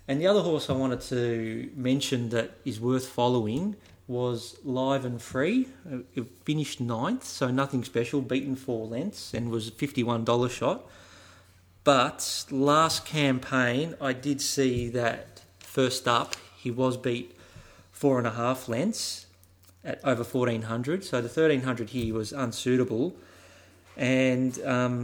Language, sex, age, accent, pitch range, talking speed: English, male, 30-49, Australian, 110-130 Hz, 130 wpm